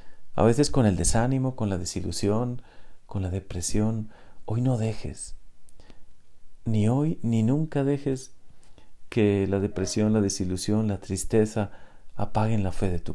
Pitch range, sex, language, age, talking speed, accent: 100-130 Hz, male, Spanish, 40-59, 140 wpm, Mexican